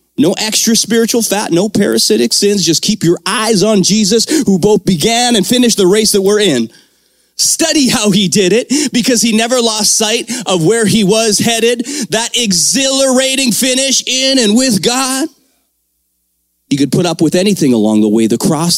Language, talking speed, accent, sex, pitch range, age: English, 180 wpm, American, male, 170-240 Hz, 30-49